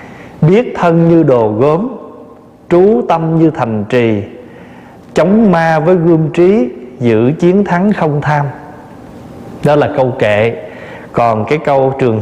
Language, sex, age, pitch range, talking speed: Vietnamese, male, 20-39, 115-170 Hz, 140 wpm